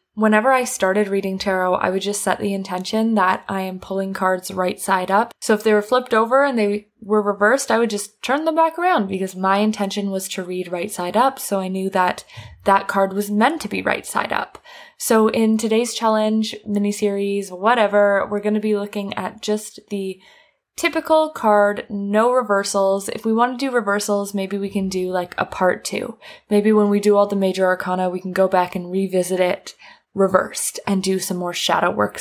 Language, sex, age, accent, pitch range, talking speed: English, female, 20-39, American, 195-230 Hz, 210 wpm